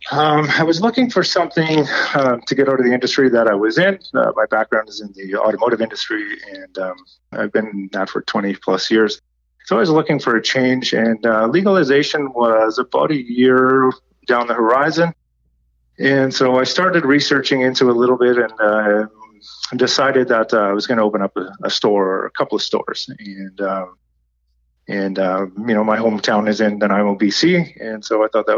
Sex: male